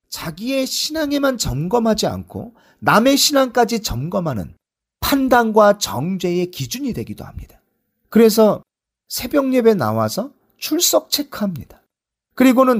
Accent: native